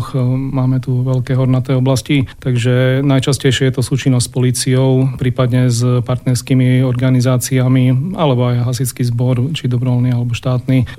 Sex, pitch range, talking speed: male, 125-130 Hz, 130 wpm